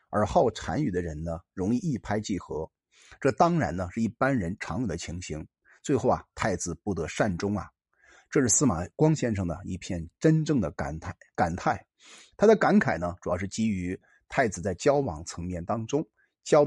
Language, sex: Chinese, male